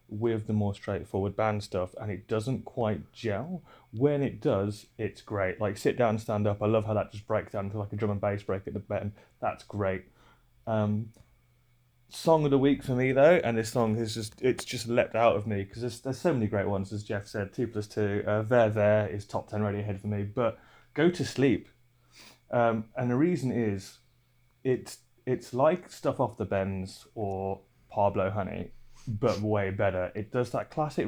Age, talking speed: 20-39, 210 wpm